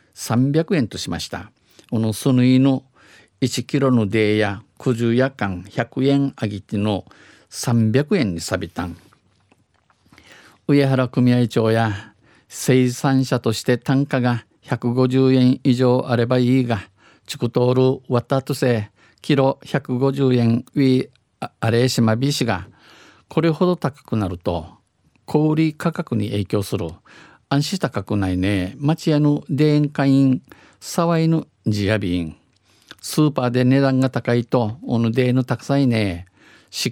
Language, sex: Japanese, male